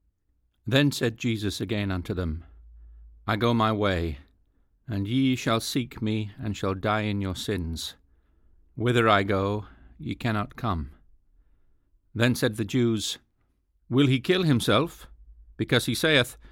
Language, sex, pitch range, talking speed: English, male, 85-115 Hz, 140 wpm